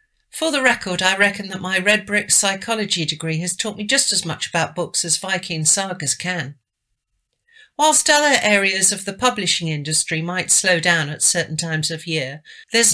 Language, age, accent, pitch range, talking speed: English, 50-69, British, 160-215 Hz, 180 wpm